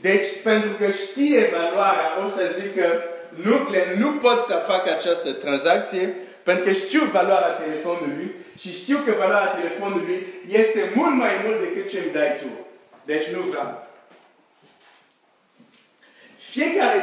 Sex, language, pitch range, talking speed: male, Romanian, 170-270 Hz, 140 wpm